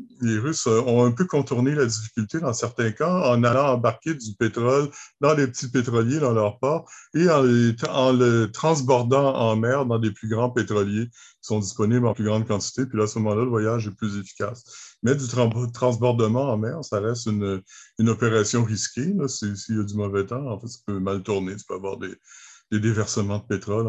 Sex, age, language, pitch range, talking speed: male, 60-79, French, 110-130 Hz, 210 wpm